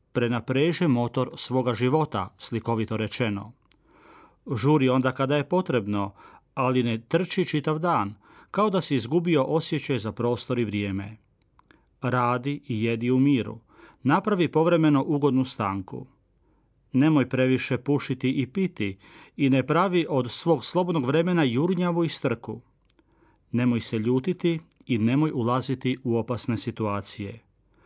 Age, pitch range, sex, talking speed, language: 40-59, 115-150 Hz, male, 125 wpm, Croatian